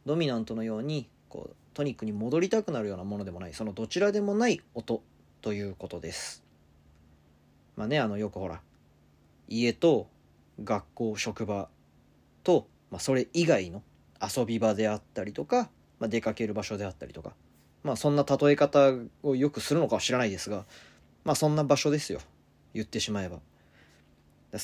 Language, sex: Japanese, male